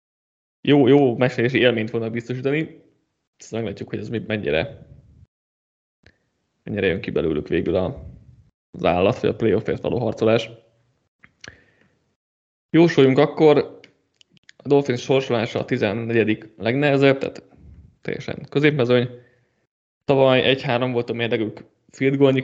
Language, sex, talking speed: Hungarian, male, 105 wpm